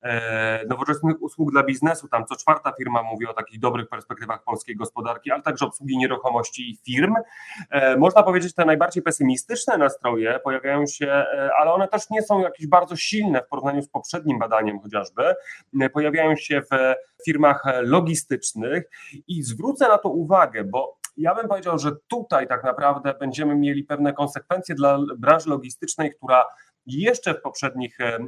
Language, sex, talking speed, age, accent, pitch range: Polish, male, 155 wpm, 30-49, native, 125-155 Hz